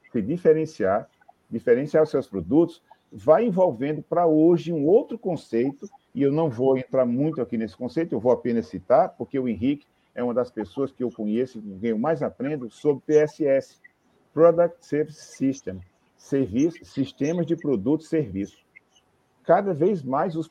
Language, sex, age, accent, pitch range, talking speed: Portuguese, male, 50-69, Brazilian, 130-170 Hz, 165 wpm